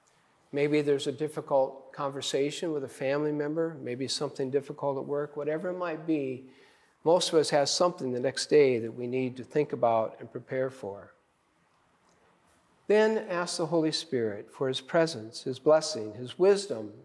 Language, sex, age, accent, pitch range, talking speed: English, male, 50-69, American, 125-165 Hz, 165 wpm